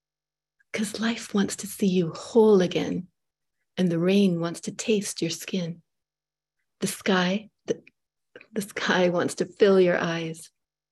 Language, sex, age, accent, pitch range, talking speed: English, female, 30-49, American, 165-200 Hz, 145 wpm